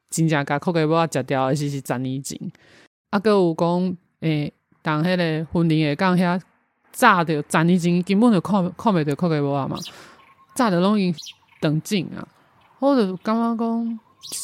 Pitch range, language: 150-195 Hz, Chinese